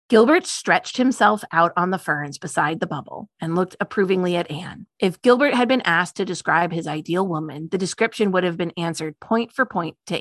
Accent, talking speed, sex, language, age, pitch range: American, 205 wpm, female, English, 30-49, 170-215 Hz